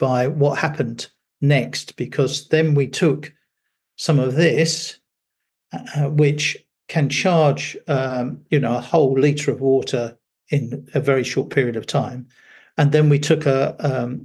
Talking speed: 150 wpm